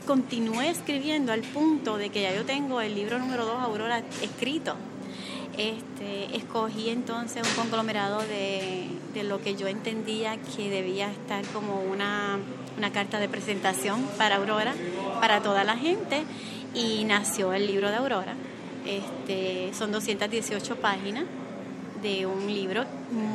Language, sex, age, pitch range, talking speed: English, female, 30-49, 195-230 Hz, 135 wpm